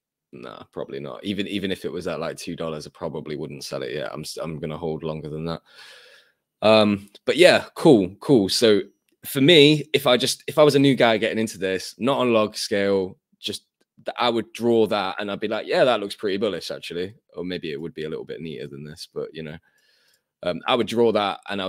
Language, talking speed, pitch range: English, 245 wpm, 85-110 Hz